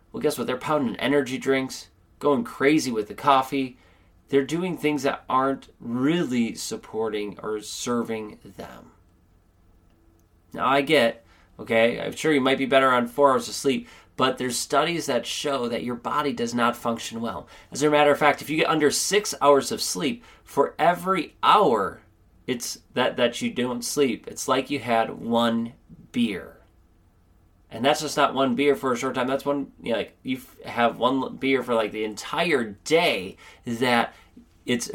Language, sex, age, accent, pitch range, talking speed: English, male, 30-49, American, 90-140 Hz, 175 wpm